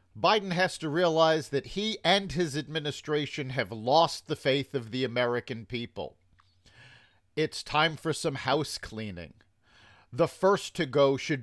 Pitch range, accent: 120-160 Hz, American